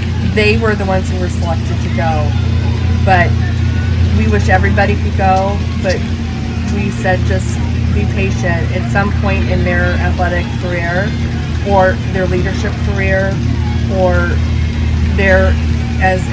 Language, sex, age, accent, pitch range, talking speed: English, female, 30-49, American, 85-115 Hz, 130 wpm